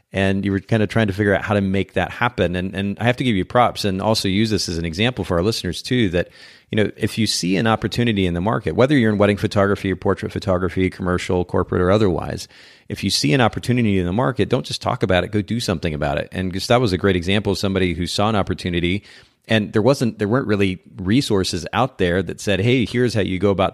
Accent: American